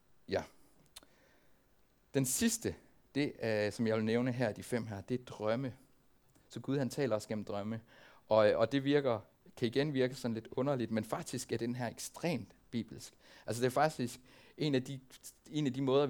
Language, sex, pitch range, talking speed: Danish, male, 110-140 Hz, 190 wpm